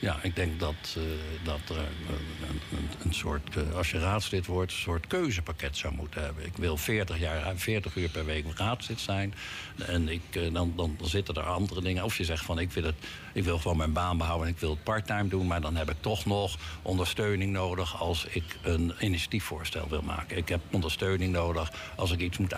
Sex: male